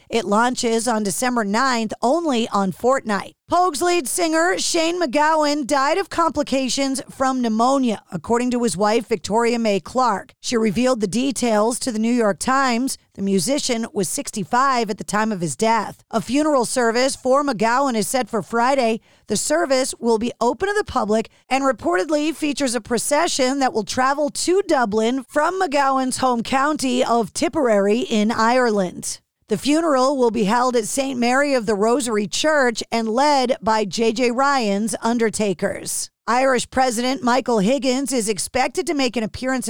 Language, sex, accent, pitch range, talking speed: English, female, American, 225-275 Hz, 160 wpm